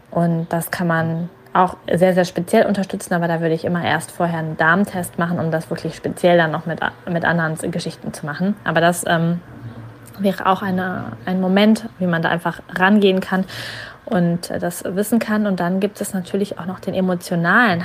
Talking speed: 190 wpm